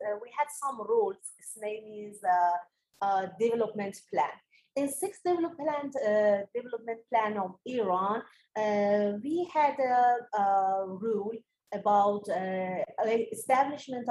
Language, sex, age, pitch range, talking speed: English, female, 30-49, 190-245 Hz, 125 wpm